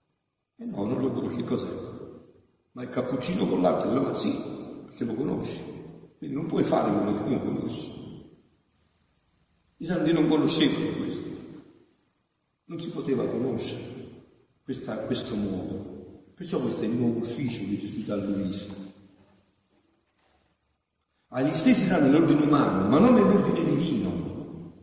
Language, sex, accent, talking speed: Italian, male, native, 135 wpm